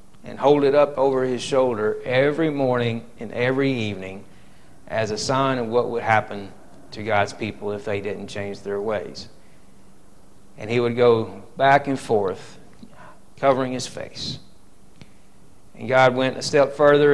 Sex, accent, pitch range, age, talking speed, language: male, American, 115-140 Hz, 40-59, 155 wpm, Bengali